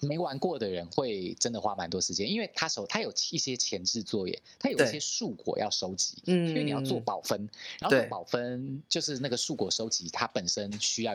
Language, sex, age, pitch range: Chinese, male, 30-49, 105-150 Hz